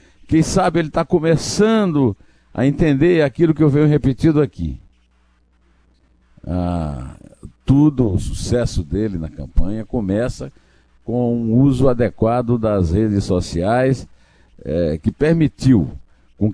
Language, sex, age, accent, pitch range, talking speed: Portuguese, male, 60-79, Brazilian, 85-130 Hz, 120 wpm